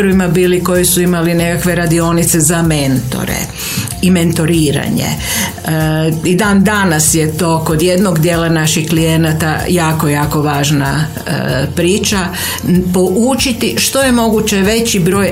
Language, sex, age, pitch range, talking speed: Croatian, female, 50-69, 165-215 Hz, 120 wpm